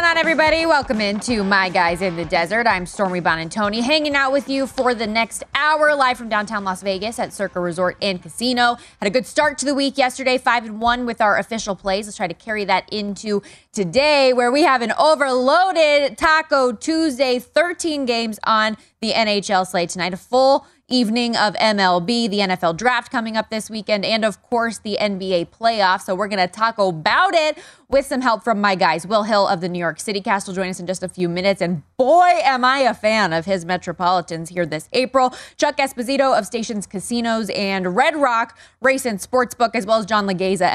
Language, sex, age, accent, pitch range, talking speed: English, female, 20-39, American, 190-265 Hz, 205 wpm